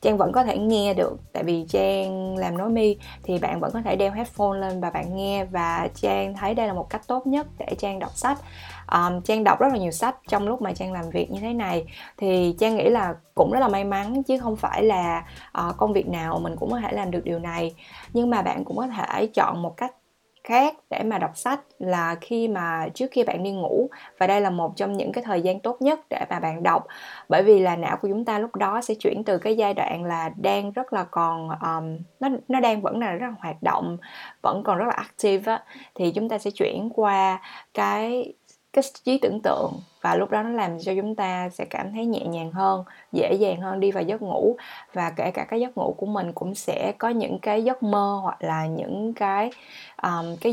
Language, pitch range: Vietnamese, 185-235 Hz